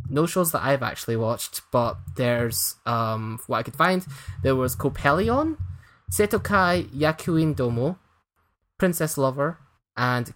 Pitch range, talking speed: 120-160 Hz, 125 wpm